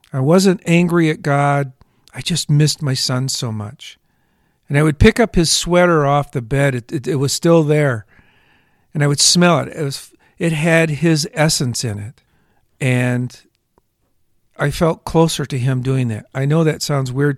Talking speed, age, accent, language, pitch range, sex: 185 wpm, 50-69, American, English, 125-165 Hz, male